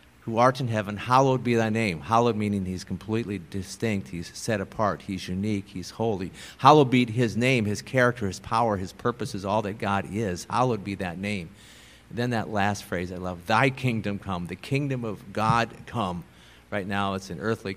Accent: American